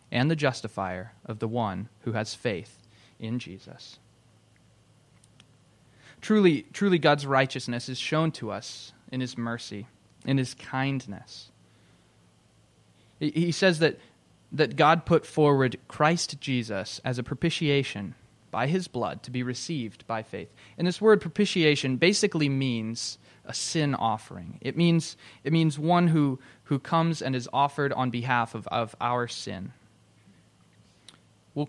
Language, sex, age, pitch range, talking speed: English, male, 20-39, 115-155 Hz, 135 wpm